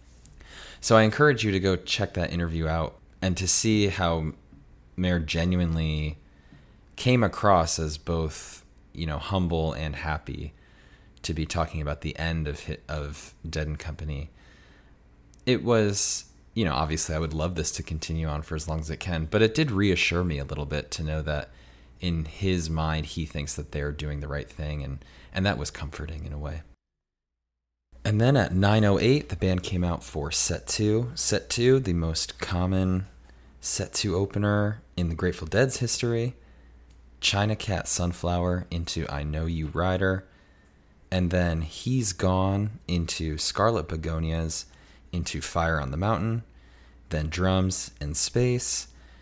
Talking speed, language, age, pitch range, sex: 160 wpm, English, 20-39, 75-95 Hz, male